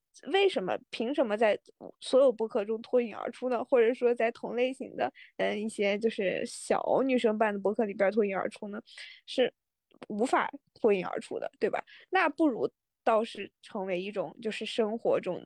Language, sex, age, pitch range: Chinese, female, 20-39, 205-245 Hz